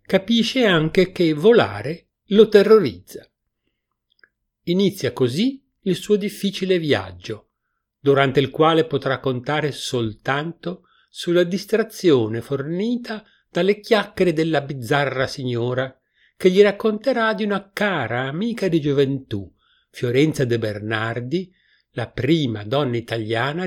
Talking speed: 105 wpm